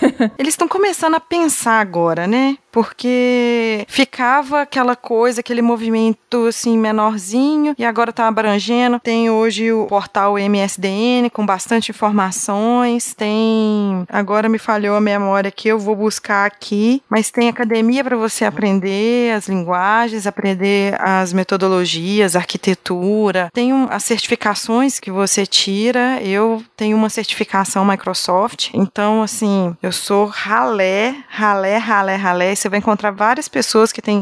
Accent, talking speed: Brazilian, 135 wpm